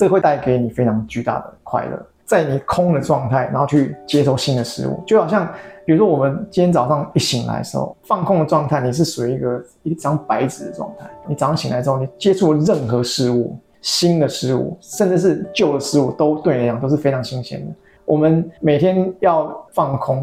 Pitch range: 130-170 Hz